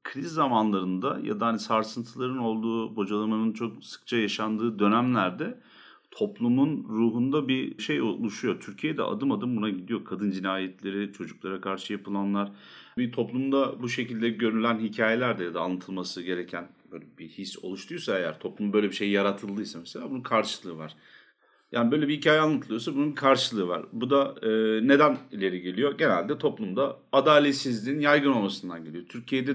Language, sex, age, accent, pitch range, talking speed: Turkish, male, 40-59, native, 100-120 Hz, 150 wpm